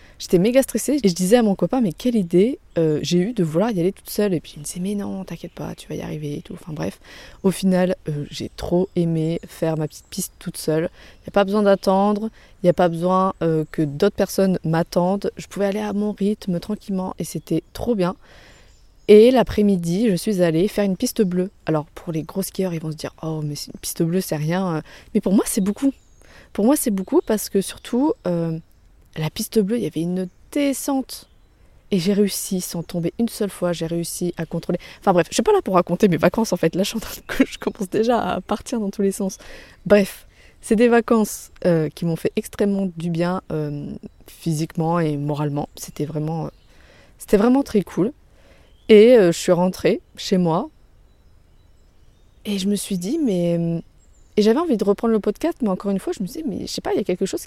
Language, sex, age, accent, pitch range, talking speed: French, female, 20-39, French, 170-210 Hz, 230 wpm